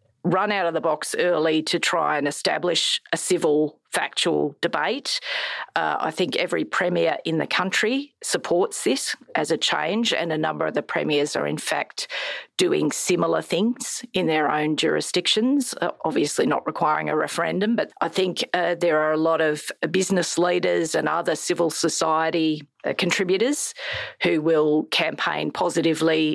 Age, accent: 40-59, Australian